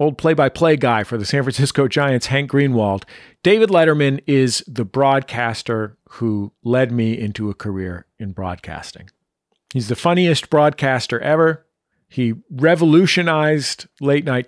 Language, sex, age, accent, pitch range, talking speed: English, male, 40-59, American, 115-150 Hz, 130 wpm